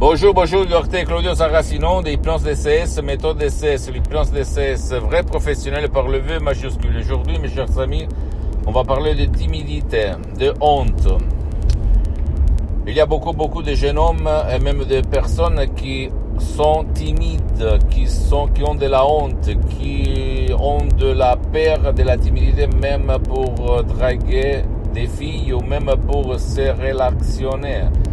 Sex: male